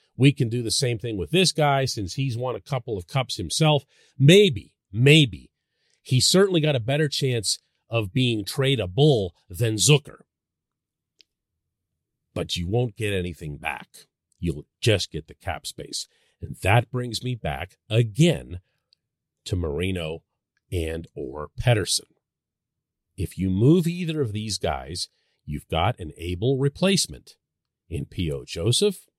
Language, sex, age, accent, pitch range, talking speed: English, male, 40-59, American, 95-145 Hz, 140 wpm